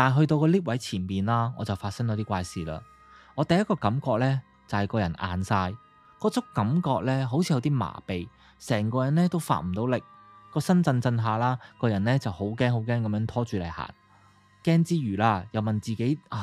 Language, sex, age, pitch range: Chinese, male, 20-39, 105-140 Hz